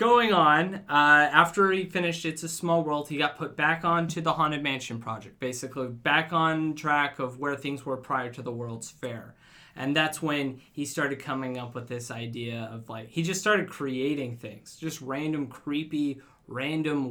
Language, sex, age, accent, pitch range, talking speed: English, male, 20-39, American, 125-155 Hz, 185 wpm